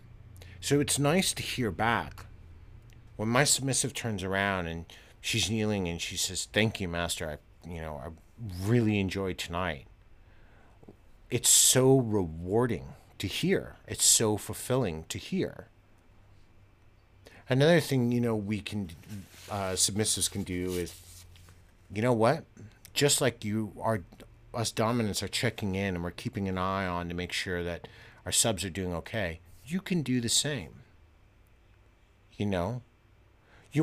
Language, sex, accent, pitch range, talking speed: English, male, American, 90-115 Hz, 145 wpm